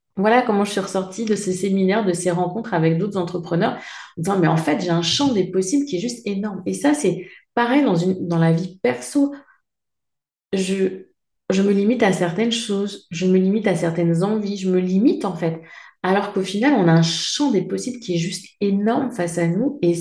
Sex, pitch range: female, 180-230 Hz